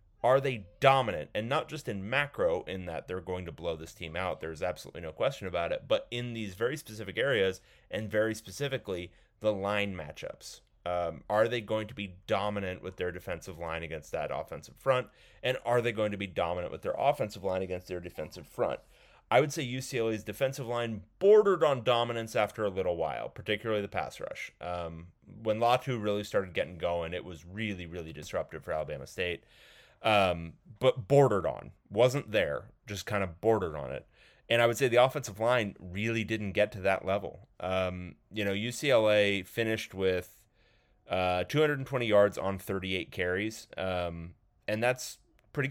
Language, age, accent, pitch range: English, 30-49, American, 95-120 Hz